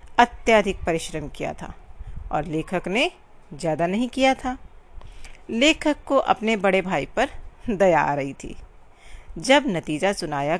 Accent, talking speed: native, 135 wpm